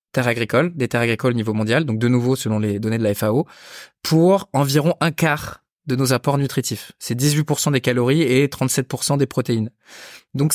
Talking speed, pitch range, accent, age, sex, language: 190 wpm, 120-150 Hz, French, 20-39, male, French